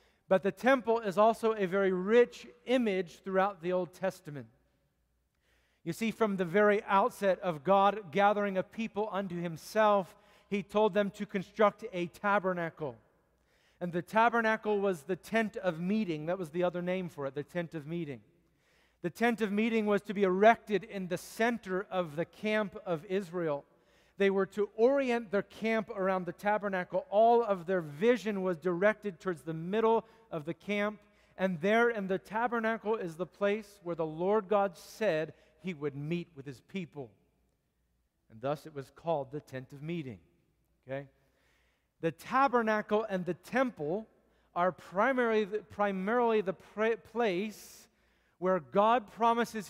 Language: English